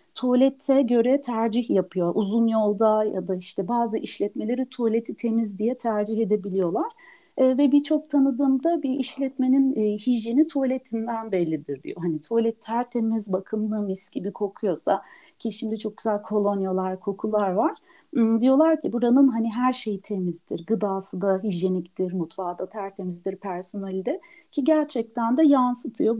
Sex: female